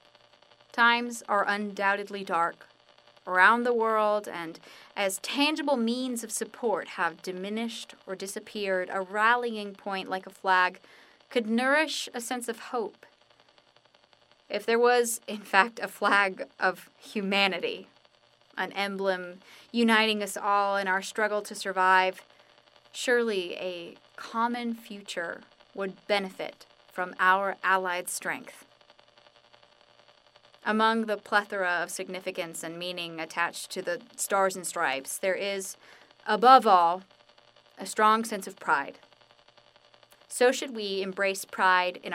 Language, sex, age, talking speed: English, female, 20-39, 120 wpm